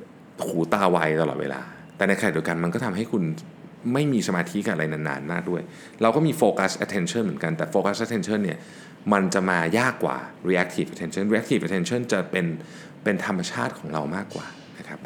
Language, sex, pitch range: Thai, male, 80-110 Hz